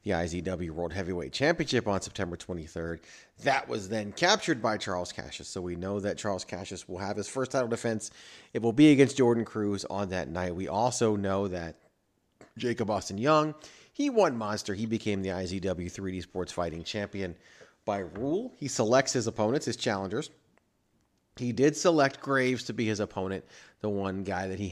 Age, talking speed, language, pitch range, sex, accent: 30-49, 180 wpm, English, 95-125 Hz, male, American